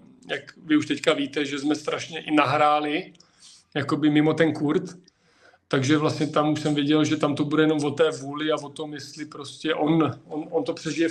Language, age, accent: Czech, 40-59, native